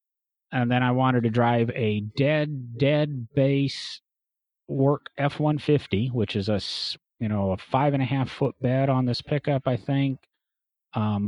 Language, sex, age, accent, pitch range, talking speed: English, male, 40-59, American, 110-135 Hz, 160 wpm